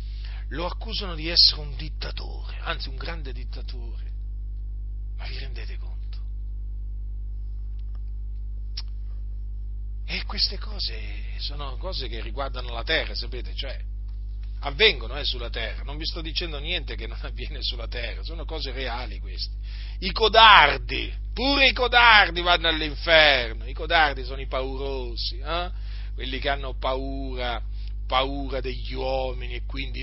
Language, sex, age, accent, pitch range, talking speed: Italian, male, 40-59, native, 100-135 Hz, 130 wpm